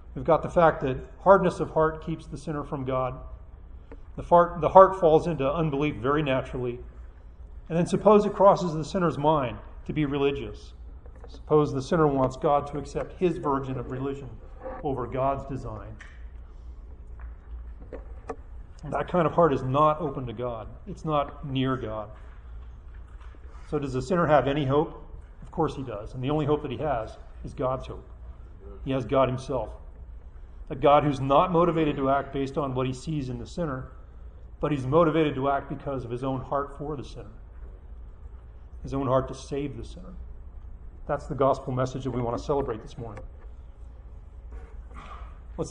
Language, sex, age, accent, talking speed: English, male, 40-59, American, 175 wpm